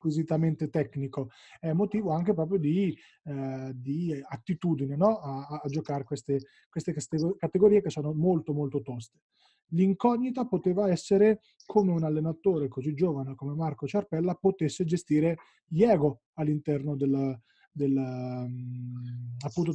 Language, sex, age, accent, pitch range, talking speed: Italian, male, 20-39, native, 140-170 Hz, 125 wpm